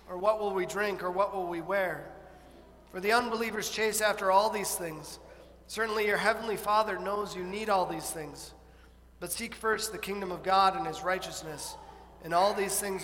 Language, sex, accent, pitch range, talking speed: English, male, American, 180-215 Hz, 195 wpm